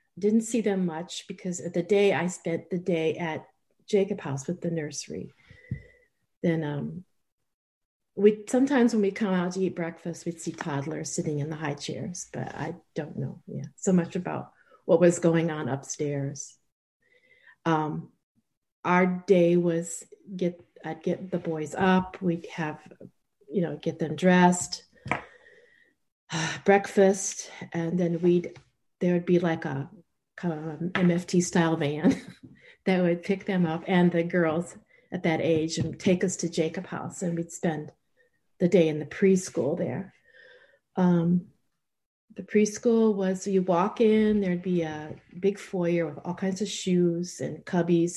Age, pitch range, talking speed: 50-69, 165-195 Hz, 160 wpm